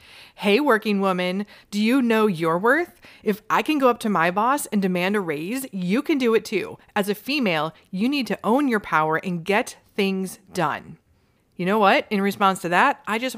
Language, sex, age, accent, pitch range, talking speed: English, female, 30-49, American, 190-245 Hz, 210 wpm